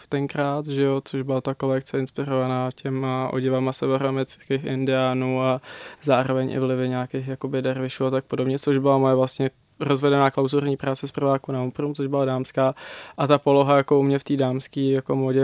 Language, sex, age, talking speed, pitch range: Czech, male, 20-39, 180 wpm, 130-140 Hz